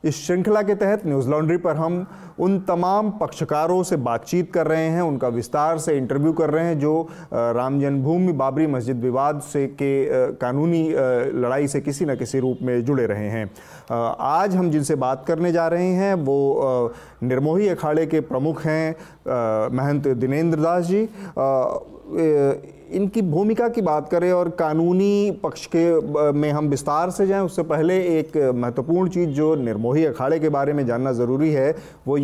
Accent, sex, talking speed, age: native, male, 165 wpm, 30-49